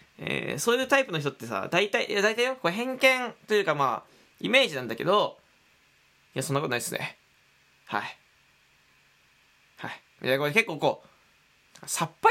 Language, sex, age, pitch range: Japanese, male, 20-39, 140-225 Hz